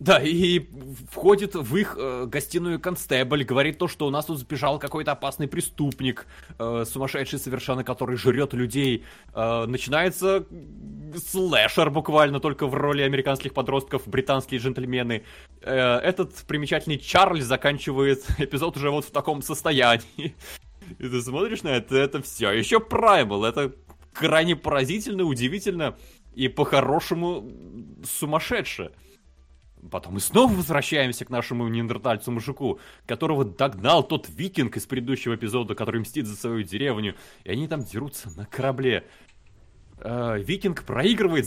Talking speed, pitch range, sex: 130 wpm, 125-180 Hz, male